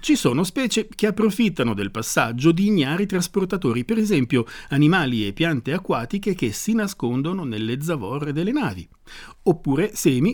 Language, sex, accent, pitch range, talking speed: Italian, male, native, 130-195 Hz, 145 wpm